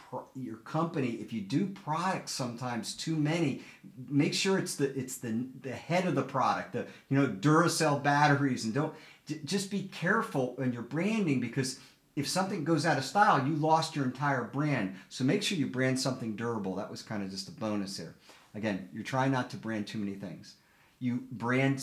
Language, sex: English, male